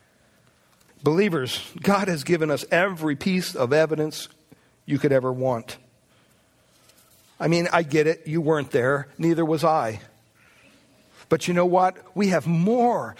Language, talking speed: English, 140 wpm